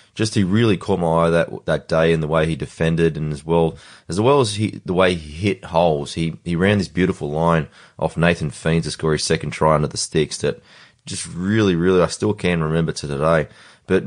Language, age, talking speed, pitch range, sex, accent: English, 20-39, 230 wpm, 80-95 Hz, male, Australian